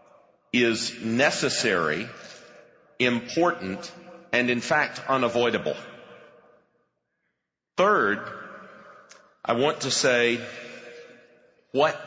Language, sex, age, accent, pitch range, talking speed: English, male, 50-69, American, 115-135 Hz, 65 wpm